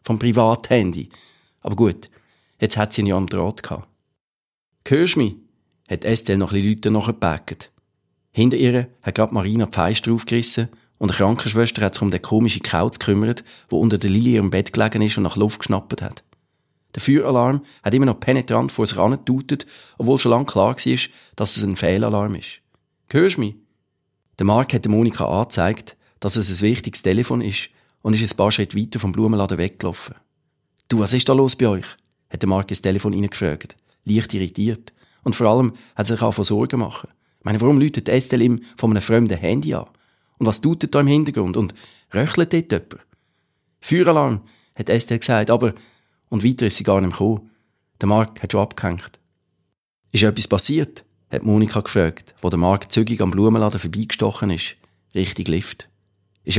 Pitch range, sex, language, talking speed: 100-120 Hz, male, German, 180 wpm